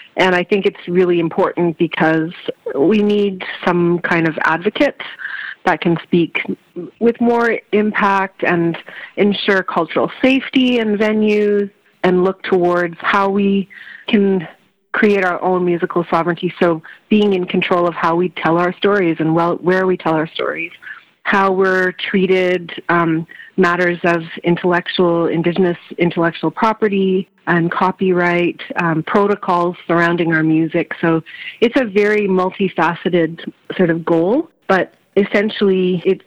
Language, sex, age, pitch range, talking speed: English, female, 30-49, 170-195 Hz, 130 wpm